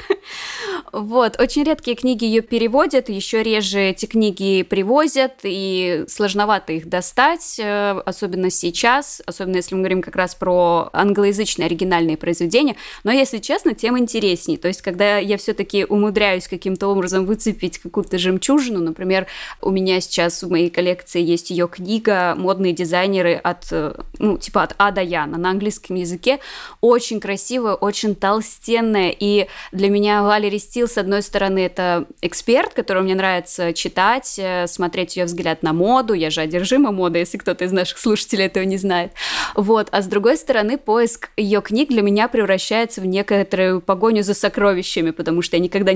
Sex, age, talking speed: female, 20-39, 155 wpm